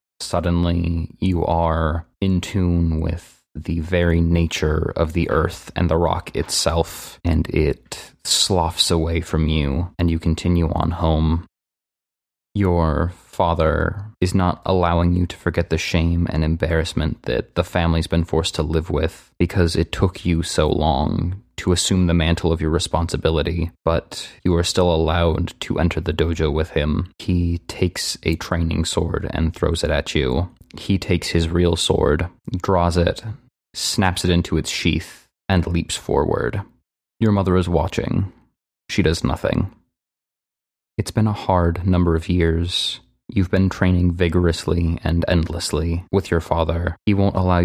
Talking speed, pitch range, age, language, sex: 155 wpm, 80-90 Hz, 20-39, English, male